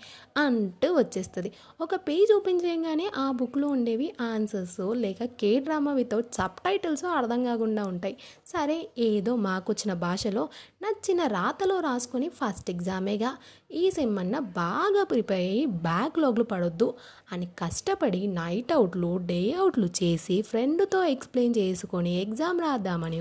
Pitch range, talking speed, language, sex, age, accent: 195-330 Hz, 120 wpm, Telugu, female, 20-39, native